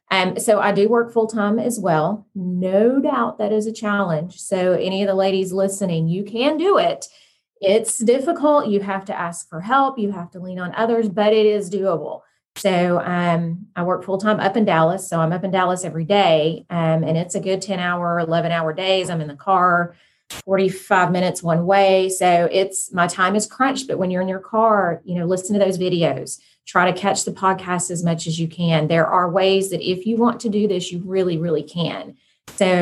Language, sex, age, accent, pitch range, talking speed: English, female, 30-49, American, 175-215 Hz, 220 wpm